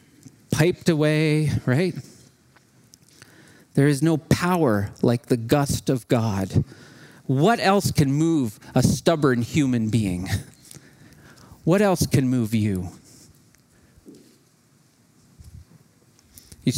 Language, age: English, 40-59